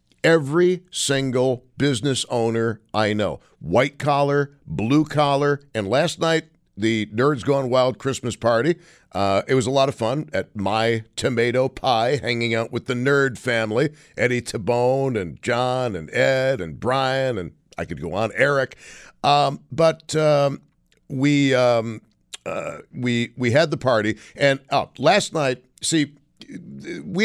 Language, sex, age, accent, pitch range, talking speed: English, male, 50-69, American, 115-140 Hz, 150 wpm